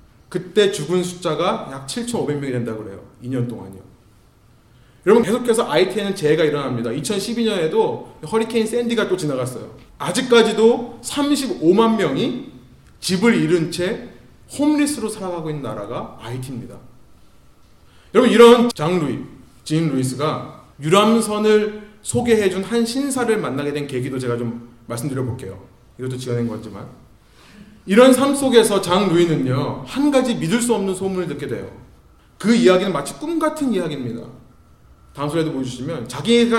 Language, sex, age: Korean, male, 30-49